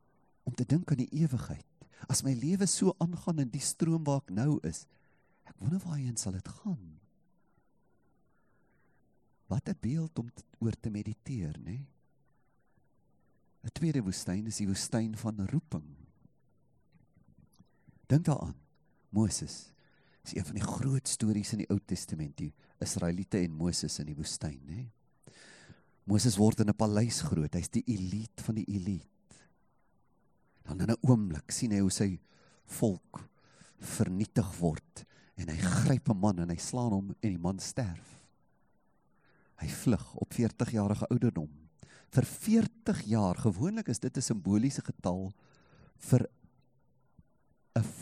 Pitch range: 100-140 Hz